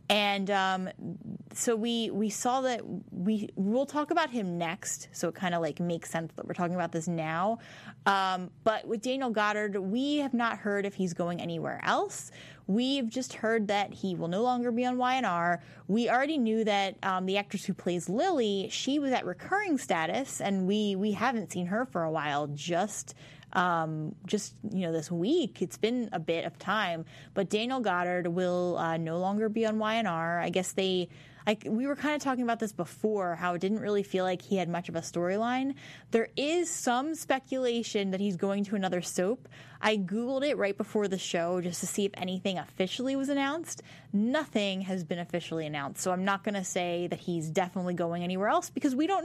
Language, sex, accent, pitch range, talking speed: English, female, American, 175-230 Hz, 200 wpm